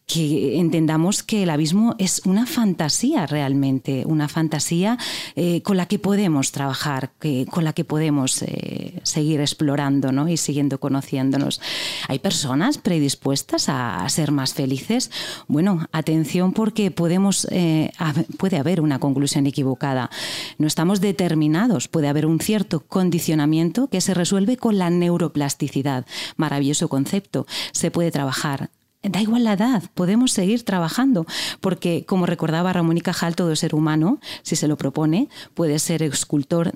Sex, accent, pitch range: female, Spanish, 150-190 Hz